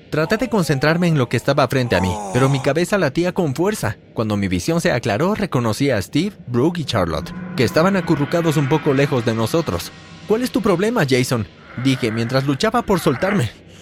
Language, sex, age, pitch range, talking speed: Spanish, male, 30-49, 110-170 Hz, 195 wpm